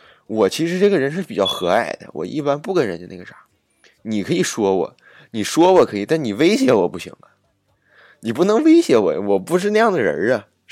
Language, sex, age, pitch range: Chinese, male, 20-39, 85-120 Hz